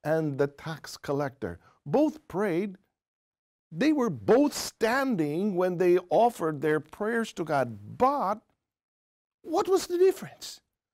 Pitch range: 130-210 Hz